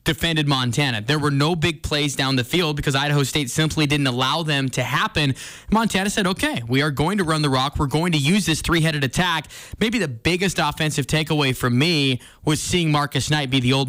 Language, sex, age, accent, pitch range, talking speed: English, male, 20-39, American, 140-165 Hz, 215 wpm